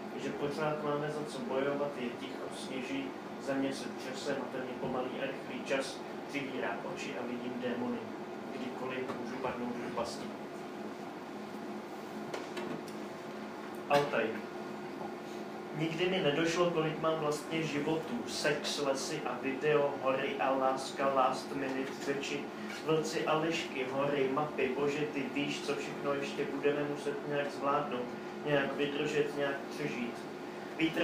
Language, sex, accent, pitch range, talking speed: Czech, male, native, 130-150 Hz, 125 wpm